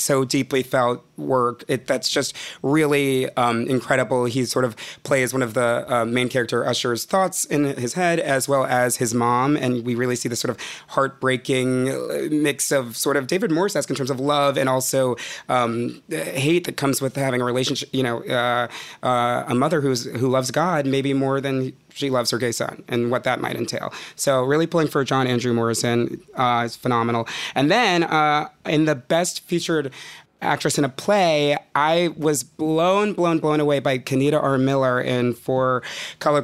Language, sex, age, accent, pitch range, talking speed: English, male, 30-49, American, 125-145 Hz, 190 wpm